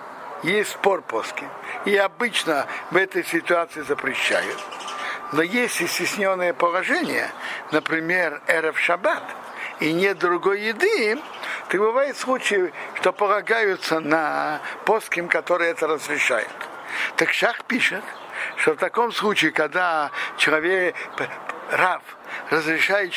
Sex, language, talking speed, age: male, Russian, 105 wpm, 60-79